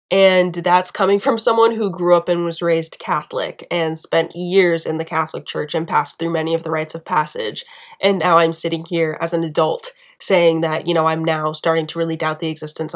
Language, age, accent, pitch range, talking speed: English, 20-39, American, 165-195 Hz, 220 wpm